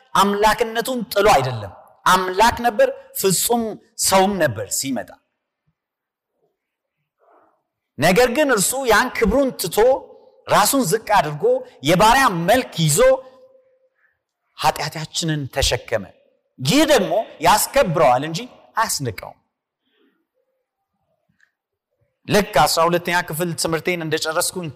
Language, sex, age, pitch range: Amharic, male, 50-69, 145-235 Hz